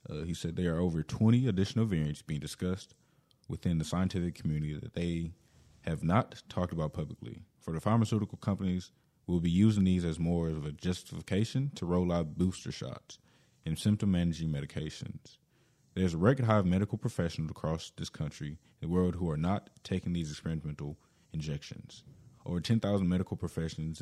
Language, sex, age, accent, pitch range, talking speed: English, male, 20-39, American, 85-105 Hz, 165 wpm